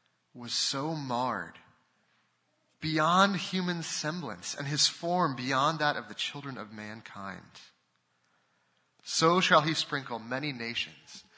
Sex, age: male, 30-49